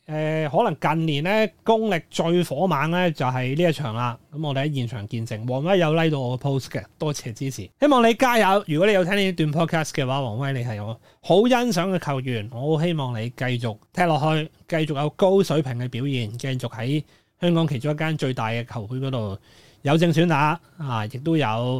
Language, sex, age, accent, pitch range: Chinese, male, 30-49, native, 120-165 Hz